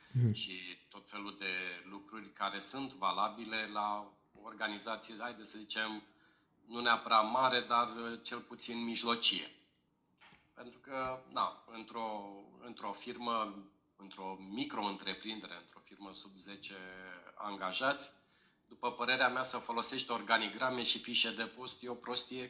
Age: 40-59